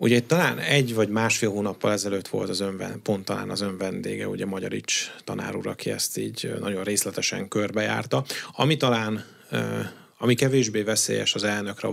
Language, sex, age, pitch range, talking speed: Hungarian, male, 30-49, 100-115 Hz, 150 wpm